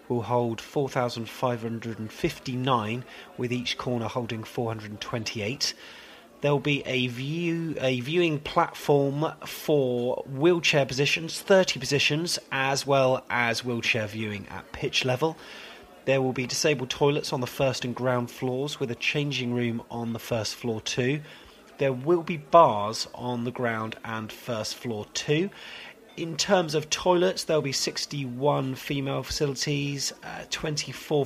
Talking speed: 135 wpm